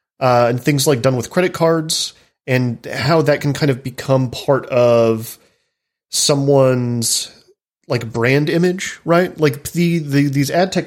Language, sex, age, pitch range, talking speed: English, male, 30-49, 120-150 Hz, 155 wpm